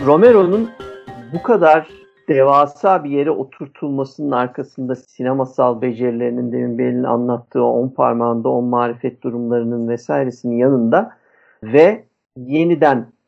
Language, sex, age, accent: Turkish, male, 50-69, native